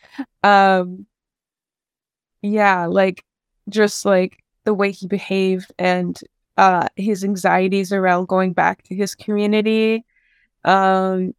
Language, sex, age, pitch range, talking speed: English, female, 20-39, 190-215 Hz, 105 wpm